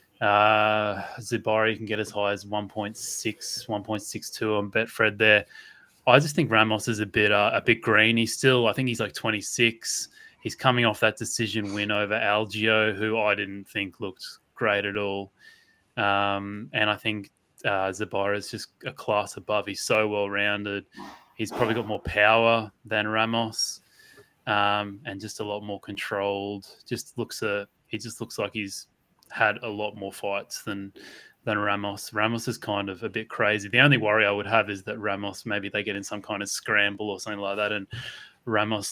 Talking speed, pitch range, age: 185 wpm, 100-110 Hz, 20-39